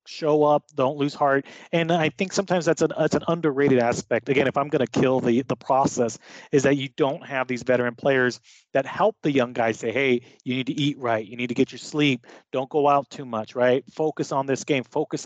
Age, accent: 30-49, American